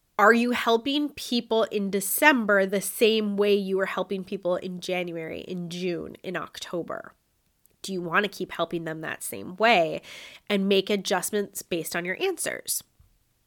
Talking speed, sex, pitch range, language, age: 160 wpm, female, 190-235 Hz, English, 20-39